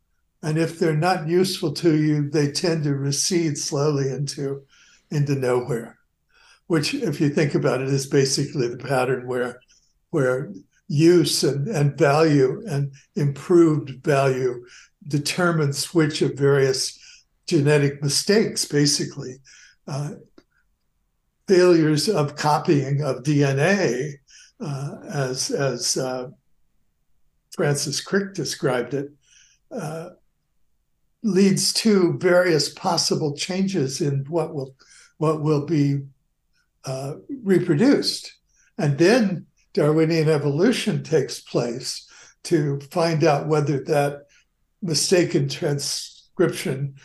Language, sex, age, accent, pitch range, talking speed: English, male, 60-79, American, 140-170 Hz, 105 wpm